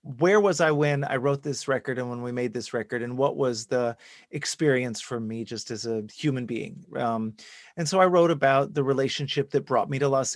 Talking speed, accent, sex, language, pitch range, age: 225 wpm, American, male, English, 120-145 Hz, 30-49